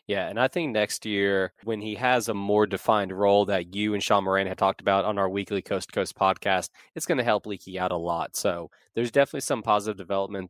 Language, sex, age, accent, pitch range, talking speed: English, male, 20-39, American, 100-120 Hz, 240 wpm